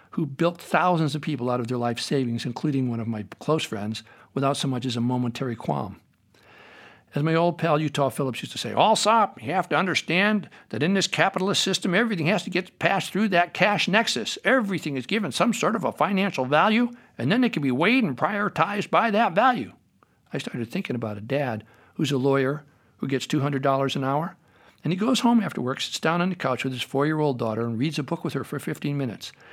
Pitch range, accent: 125-170 Hz, American